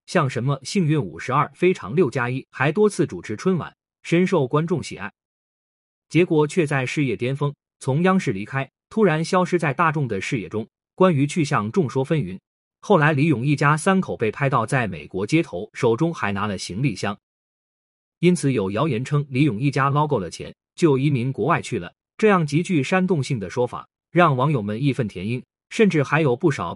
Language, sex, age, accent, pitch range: Chinese, male, 20-39, native, 125-170 Hz